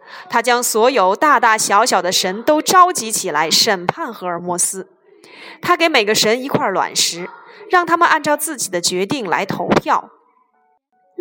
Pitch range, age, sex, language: 205-345 Hz, 20-39, female, Chinese